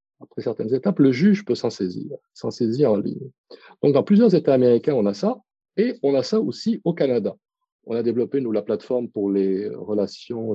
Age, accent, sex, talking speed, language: 40-59, French, male, 205 wpm, French